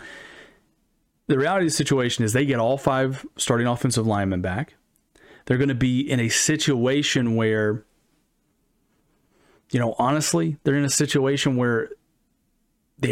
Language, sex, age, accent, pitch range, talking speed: English, male, 30-49, American, 120-150 Hz, 140 wpm